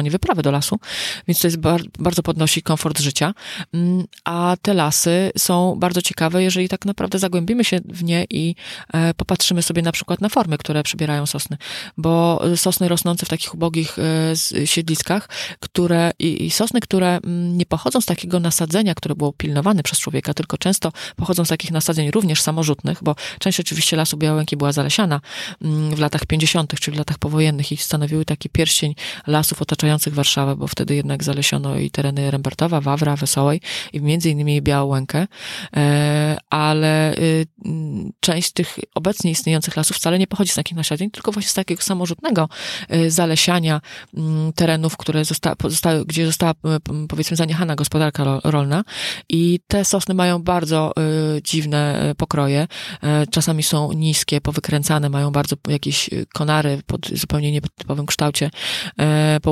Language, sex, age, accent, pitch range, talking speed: Polish, female, 30-49, native, 150-175 Hz, 145 wpm